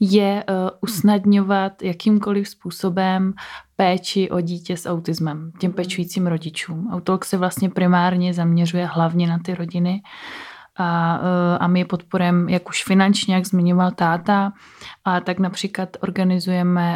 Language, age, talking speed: Czech, 20-39, 125 wpm